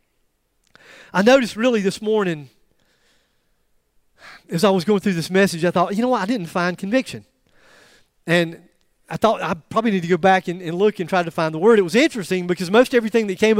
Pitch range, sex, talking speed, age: 190-270 Hz, male, 205 wpm, 40-59